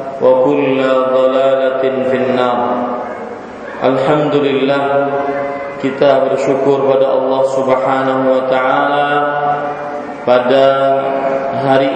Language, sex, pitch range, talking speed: Malay, male, 130-140 Hz, 75 wpm